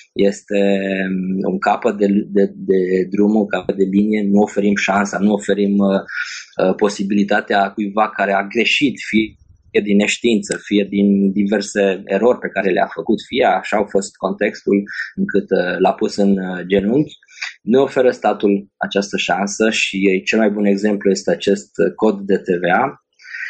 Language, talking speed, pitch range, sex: Romanian, 145 wpm, 95-105 Hz, male